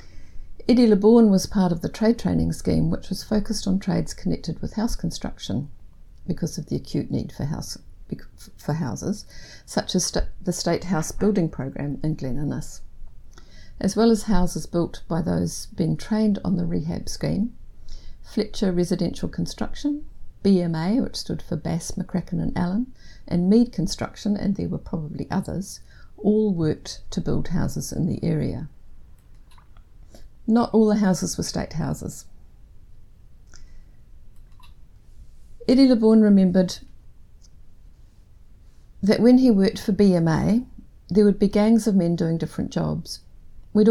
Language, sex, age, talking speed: English, female, 60-79, 140 wpm